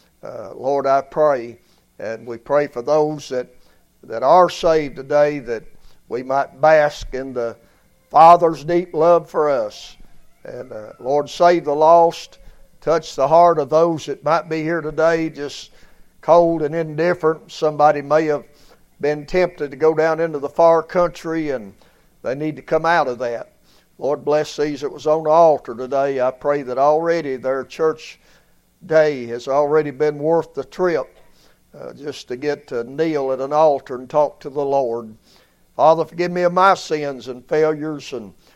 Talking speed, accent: 170 wpm, American